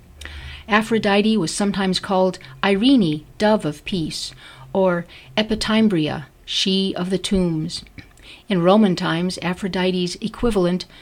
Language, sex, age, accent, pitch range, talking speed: English, female, 50-69, American, 160-205 Hz, 105 wpm